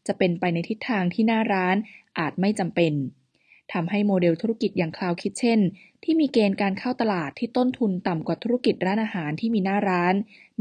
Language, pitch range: Thai, 175-215 Hz